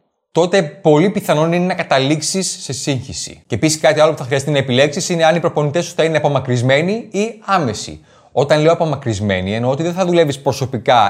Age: 20-39